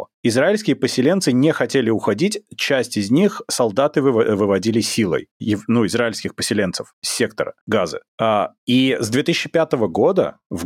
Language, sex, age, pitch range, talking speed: Russian, male, 30-49, 105-130 Hz, 120 wpm